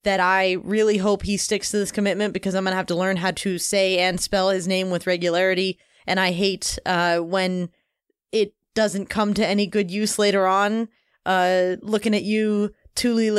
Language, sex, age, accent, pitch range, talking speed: English, female, 20-39, American, 185-215 Hz, 195 wpm